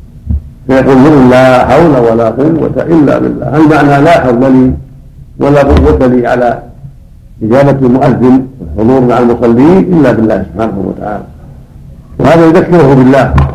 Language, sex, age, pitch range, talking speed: Arabic, male, 50-69, 115-140 Hz, 125 wpm